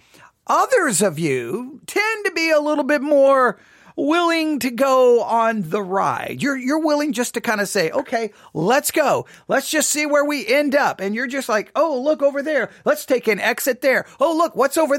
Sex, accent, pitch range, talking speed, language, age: male, American, 210-285 Hz, 205 wpm, English, 40-59